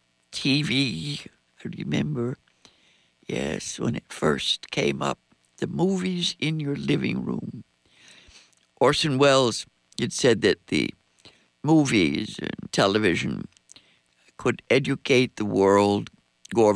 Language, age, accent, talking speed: English, 60-79, American, 105 wpm